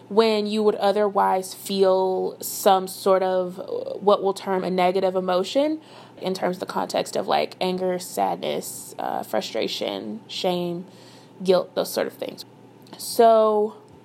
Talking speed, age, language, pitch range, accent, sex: 135 wpm, 20-39, English, 185-225 Hz, American, female